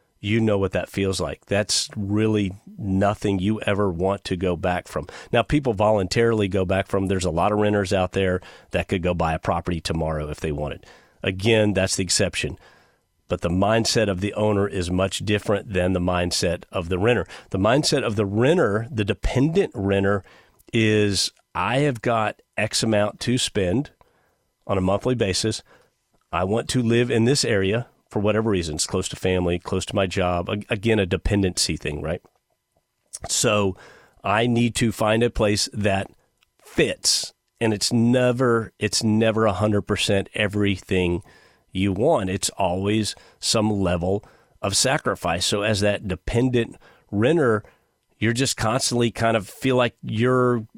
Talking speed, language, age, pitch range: 165 wpm, English, 40-59, 95-115 Hz